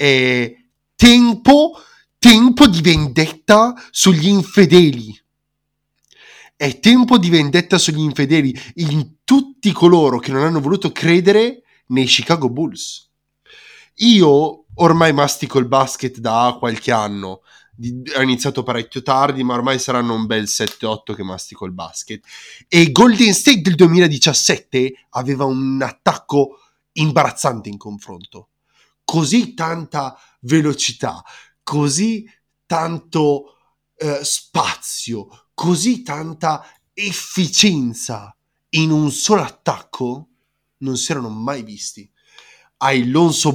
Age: 30-49